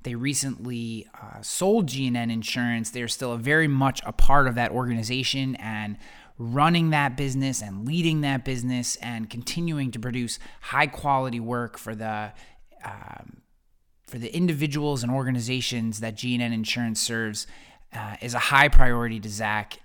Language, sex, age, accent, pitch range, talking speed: English, male, 30-49, American, 110-135 Hz, 150 wpm